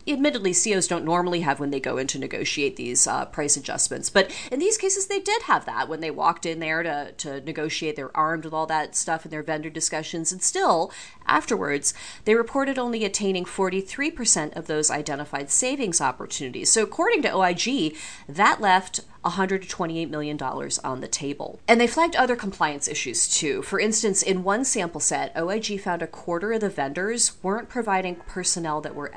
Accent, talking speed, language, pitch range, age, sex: American, 185 wpm, English, 155-230 Hz, 30-49, female